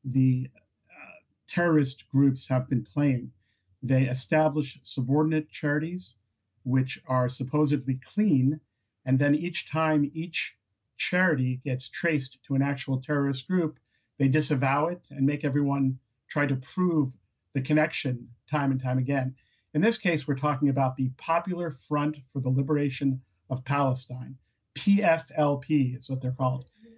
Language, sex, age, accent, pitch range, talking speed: English, male, 50-69, American, 130-155 Hz, 140 wpm